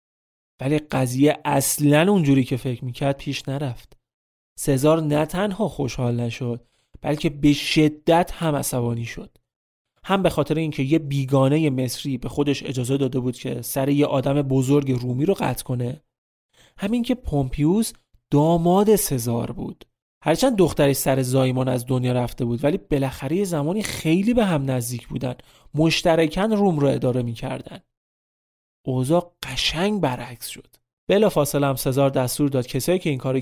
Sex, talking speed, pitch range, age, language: male, 145 wpm, 130-160 Hz, 30-49, Persian